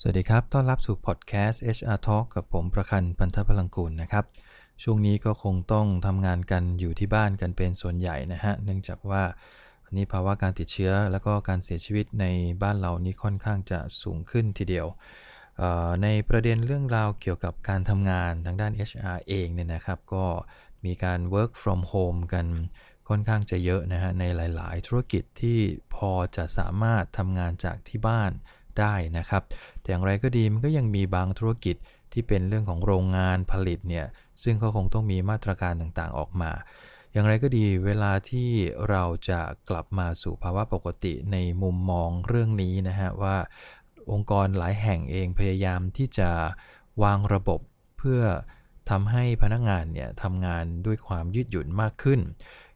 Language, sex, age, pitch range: English, male, 20-39, 90-105 Hz